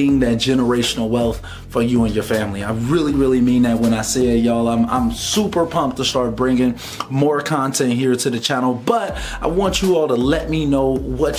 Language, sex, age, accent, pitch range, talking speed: English, male, 30-49, American, 120-150 Hz, 215 wpm